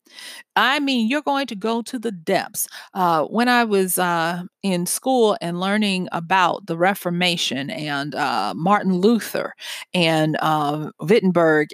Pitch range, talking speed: 175-235 Hz, 145 wpm